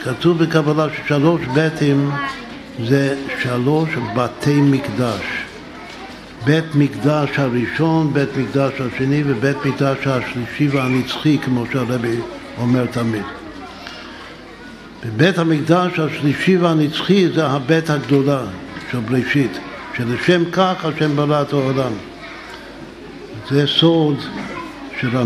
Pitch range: 125-155 Hz